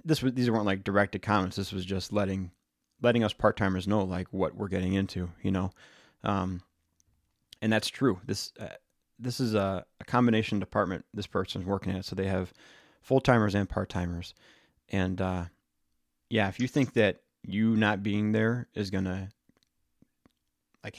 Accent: American